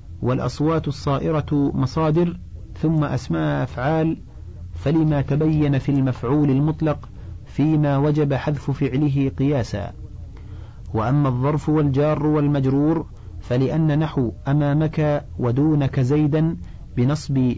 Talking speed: 90 wpm